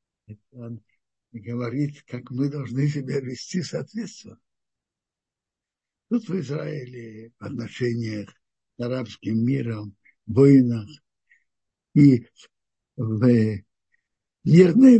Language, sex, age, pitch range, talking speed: Russian, male, 60-79, 120-170 Hz, 80 wpm